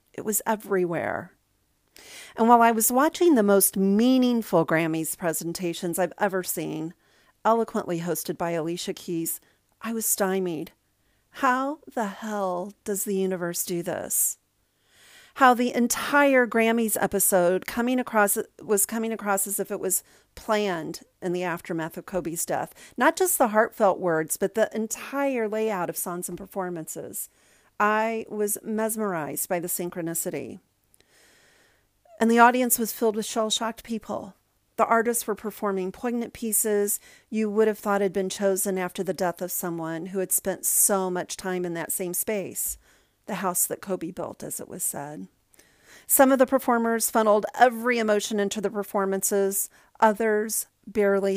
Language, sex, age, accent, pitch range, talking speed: English, female, 40-59, American, 175-225 Hz, 150 wpm